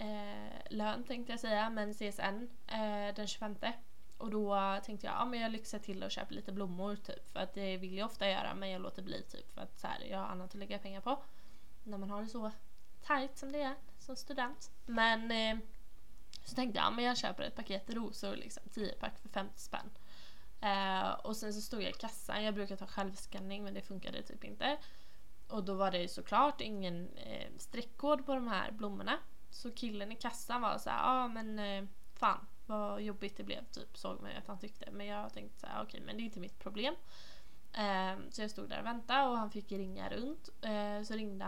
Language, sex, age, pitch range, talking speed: English, female, 10-29, 200-235 Hz, 225 wpm